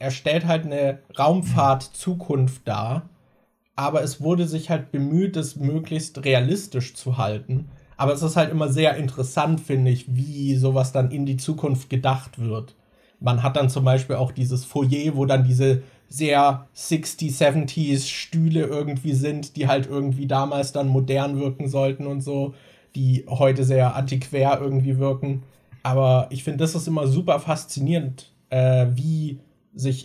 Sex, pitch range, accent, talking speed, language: male, 130-150 Hz, German, 160 wpm, German